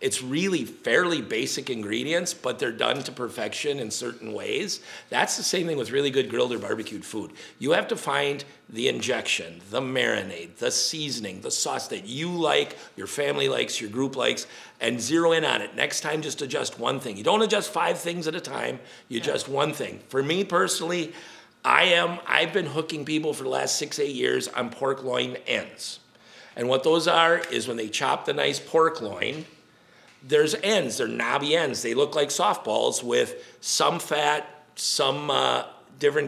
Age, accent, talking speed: 50-69, American, 185 wpm